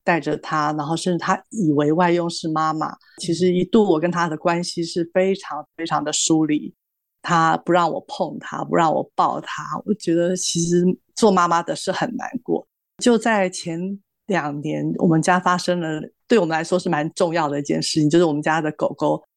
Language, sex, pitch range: Chinese, female, 160-190 Hz